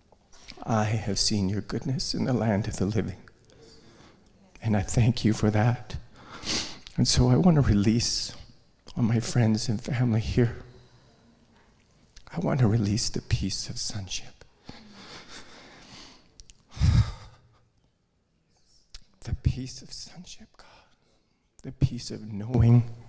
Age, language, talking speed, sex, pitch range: 40-59, English, 120 wpm, male, 105-125 Hz